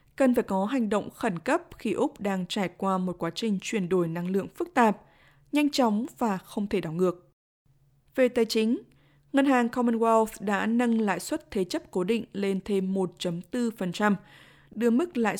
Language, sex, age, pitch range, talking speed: Vietnamese, female, 20-39, 180-235 Hz, 185 wpm